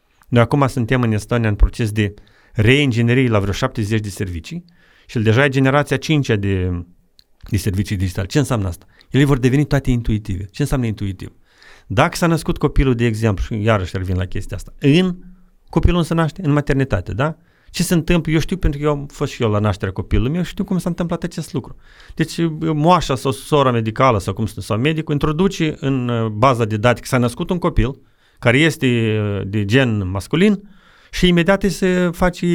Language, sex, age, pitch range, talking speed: Romanian, male, 40-59, 110-160 Hz, 195 wpm